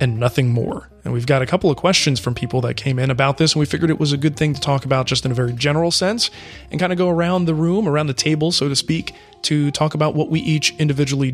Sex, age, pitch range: male, 20-39, 130-160 Hz